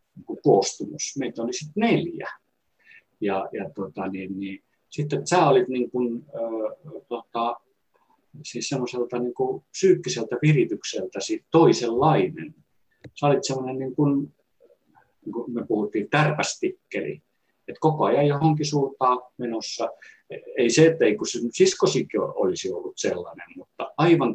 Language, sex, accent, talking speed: Finnish, male, native, 115 wpm